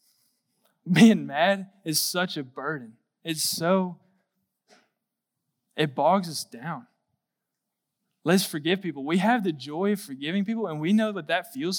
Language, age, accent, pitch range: English, 20-39, American, 150-205 Hz